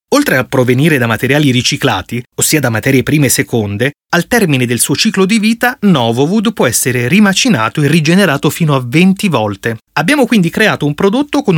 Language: Italian